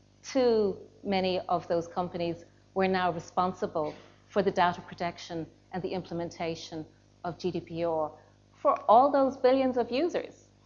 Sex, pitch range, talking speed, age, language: female, 175-225 Hz, 130 wpm, 40-59, English